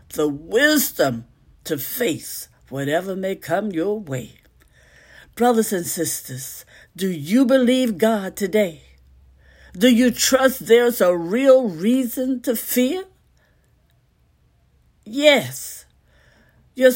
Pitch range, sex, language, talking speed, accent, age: 160-255 Hz, female, English, 100 wpm, American, 60-79